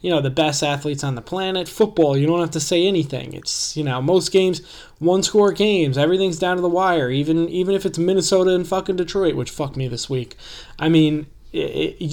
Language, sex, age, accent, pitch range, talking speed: English, male, 20-39, American, 140-175 Hz, 220 wpm